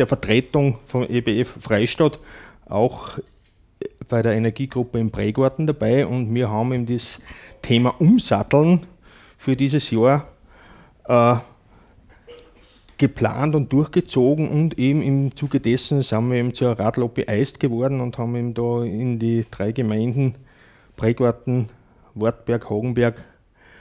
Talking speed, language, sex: 125 wpm, German, male